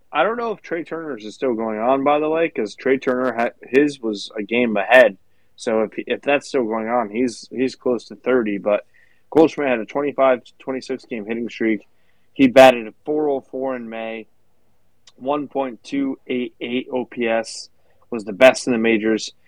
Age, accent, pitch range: 20-39, American, 110-135 Hz